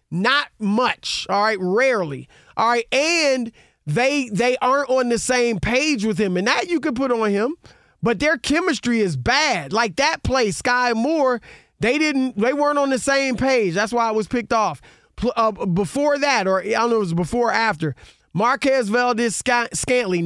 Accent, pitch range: American, 210-280 Hz